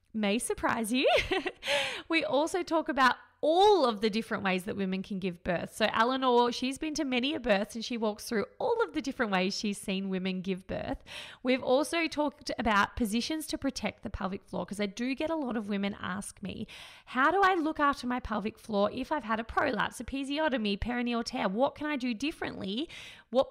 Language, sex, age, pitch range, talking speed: English, female, 20-39, 205-275 Hz, 205 wpm